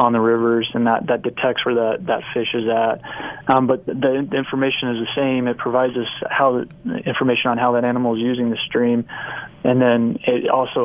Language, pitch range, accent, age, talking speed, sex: English, 115-125 Hz, American, 20-39, 210 wpm, male